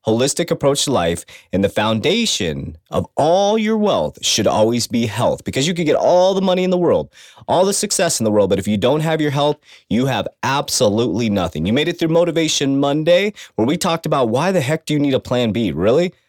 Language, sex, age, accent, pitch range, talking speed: English, male, 30-49, American, 110-165 Hz, 230 wpm